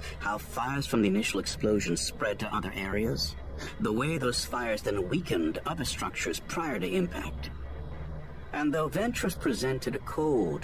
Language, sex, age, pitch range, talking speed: English, male, 50-69, 75-125 Hz, 150 wpm